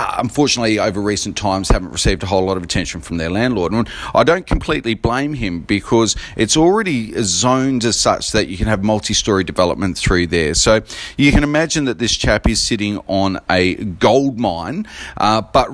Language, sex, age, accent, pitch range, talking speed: English, male, 40-59, Australian, 100-125 Hz, 185 wpm